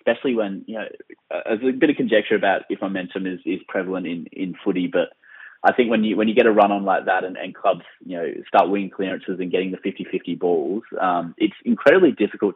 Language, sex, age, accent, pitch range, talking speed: English, male, 20-39, Australian, 90-110 Hz, 230 wpm